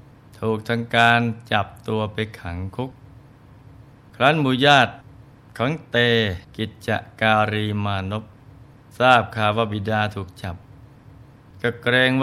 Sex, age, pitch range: male, 20-39, 110-125 Hz